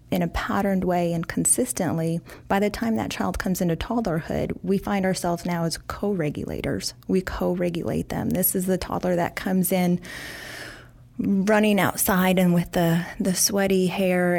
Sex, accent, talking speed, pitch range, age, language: female, American, 160 wpm, 165-195 Hz, 30-49, English